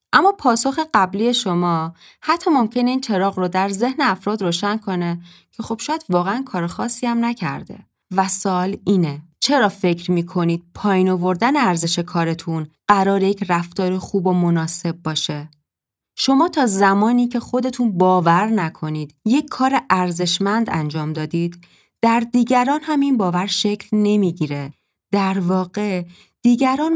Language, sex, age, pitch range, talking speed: Persian, female, 30-49, 170-240 Hz, 135 wpm